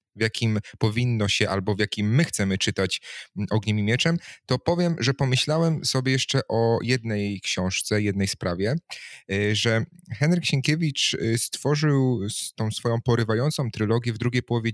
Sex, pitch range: male, 105-120 Hz